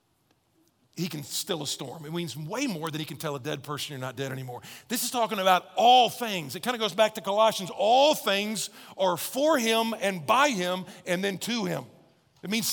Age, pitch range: 50-69, 175-240 Hz